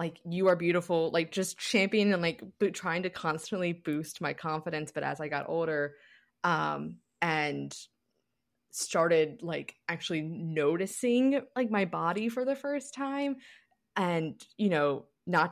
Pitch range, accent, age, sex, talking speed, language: 155-195 Hz, American, 20-39, female, 145 wpm, English